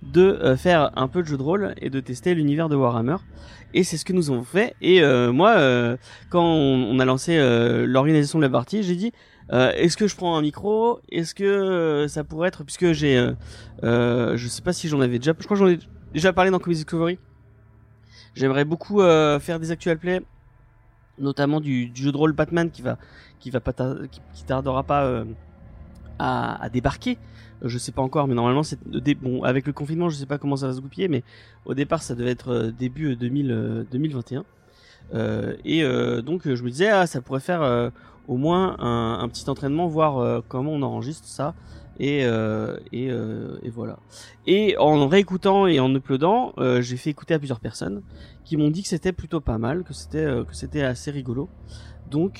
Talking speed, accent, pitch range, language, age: 220 wpm, French, 120-165 Hz, French, 30-49